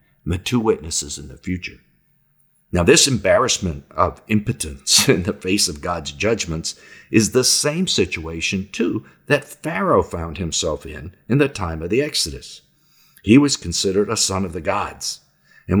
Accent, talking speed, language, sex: American, 160 wpm, English, male